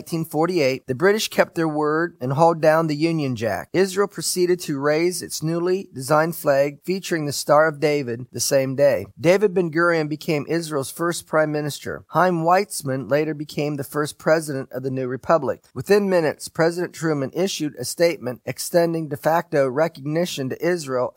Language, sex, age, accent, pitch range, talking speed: English, male, 30-49, American, 140-170 Hz, 165 wpm